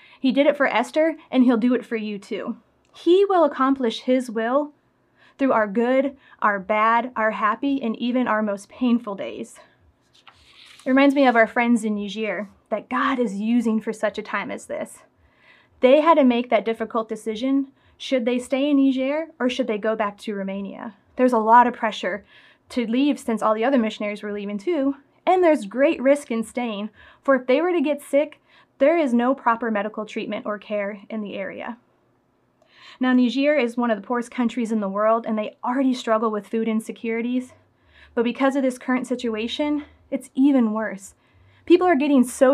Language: English